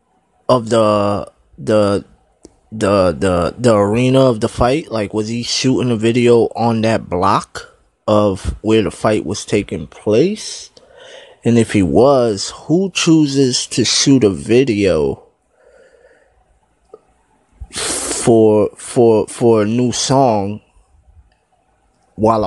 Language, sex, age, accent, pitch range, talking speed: English, male, 20-39, American, 105-135 Hz, 115 wpm